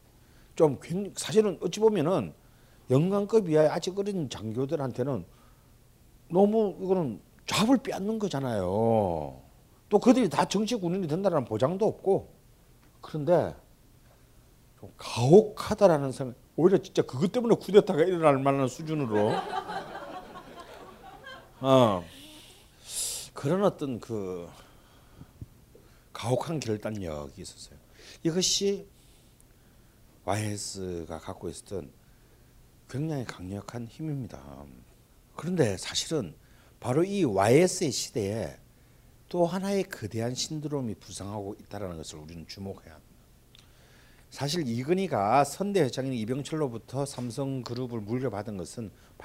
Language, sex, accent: Korean, male, native